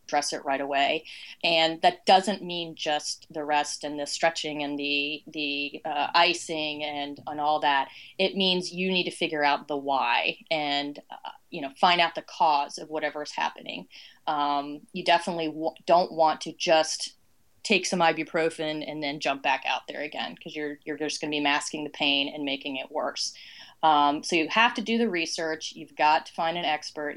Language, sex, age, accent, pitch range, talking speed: English, female, 30-49, American, 145-170 Hz, 200 wpm